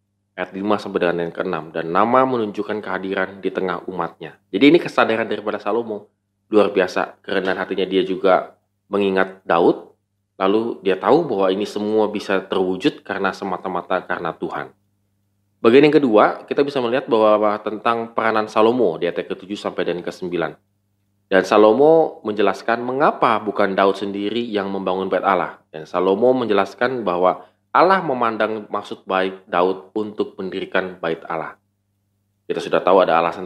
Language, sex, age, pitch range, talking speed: Indonesian, male, 20-39, 95-110 Hz, 150 wpm